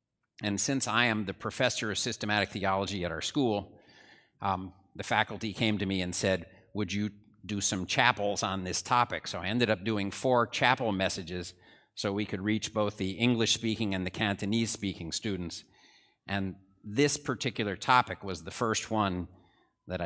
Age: 50-69